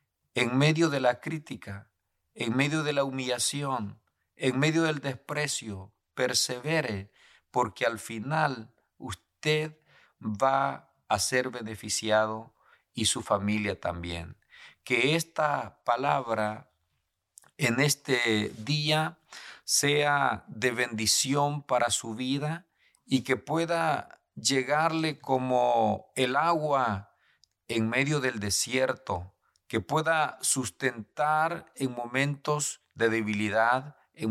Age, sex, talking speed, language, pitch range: 50-69, male, 100 wpm, Spanish, 110-145 Hz